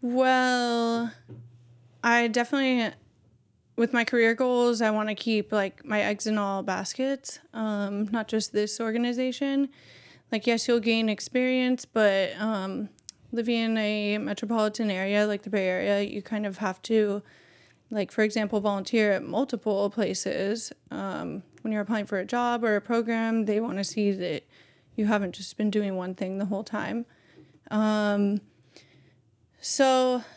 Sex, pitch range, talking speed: female, 205-235 Hz, 155 wpm